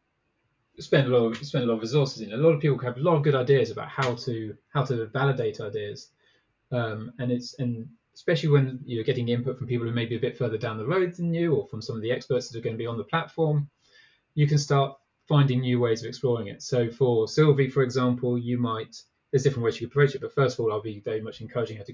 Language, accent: English, British